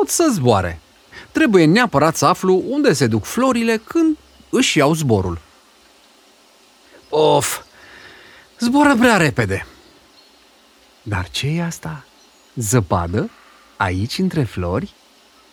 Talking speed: 100 wpm